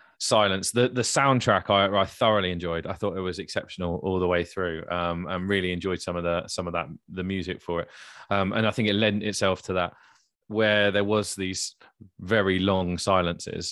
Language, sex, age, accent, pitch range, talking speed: English, male, 20-39, British, 95-130 Hz, 205 wpm